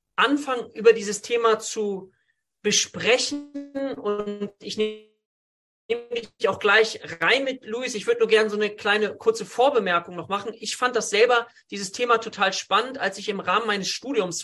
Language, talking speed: German, 165 wpm